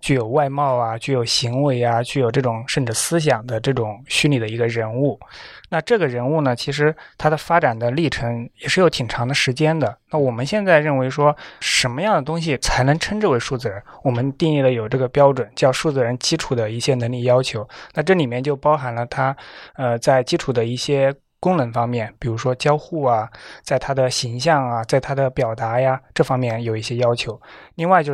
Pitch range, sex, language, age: 120-155 Hz, male, Chinese, 20-39